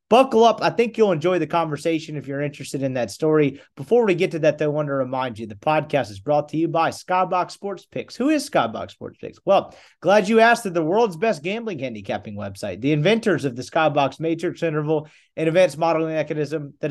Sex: male